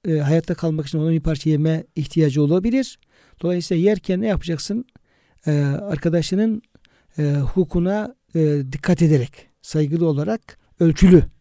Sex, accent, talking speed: male, native, 125 wpm